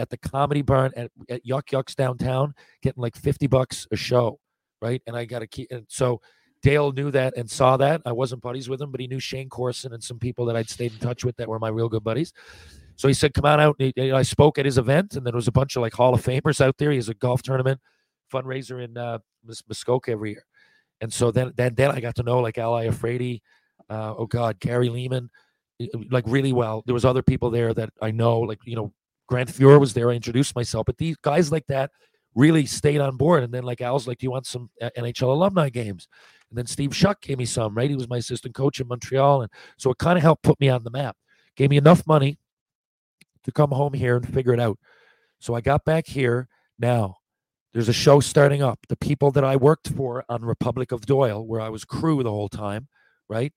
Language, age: English, 40-59